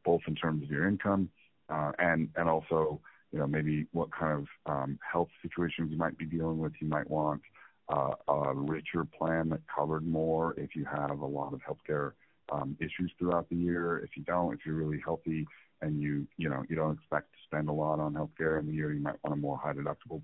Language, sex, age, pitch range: English, male, 40-59, 75-85 Hz